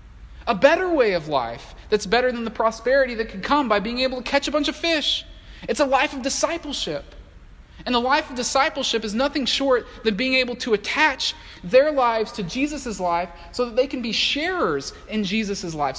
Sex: male